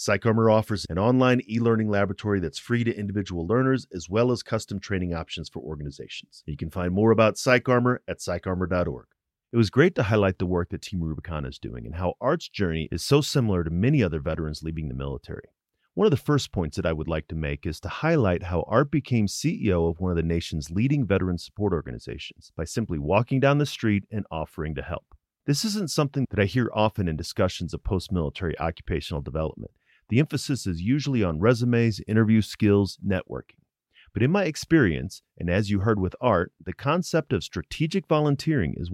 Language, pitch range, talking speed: English, 85-125 Hz, 195 wpm